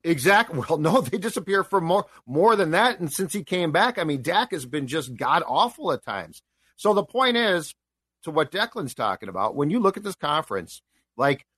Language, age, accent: English, 40-59, American